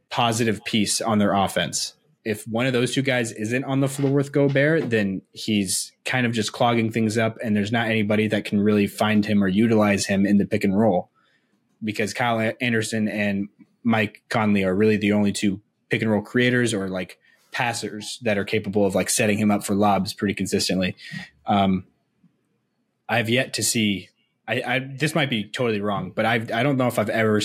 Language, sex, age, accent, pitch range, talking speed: English, male, 20-39, American, 105-125 Hz, 200 wpm